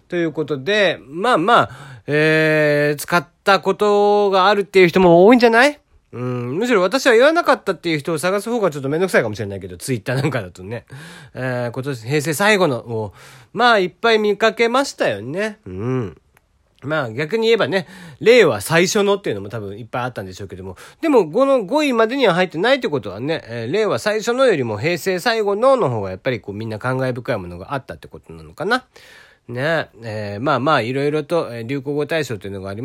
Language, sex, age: Japanese, male, 40-59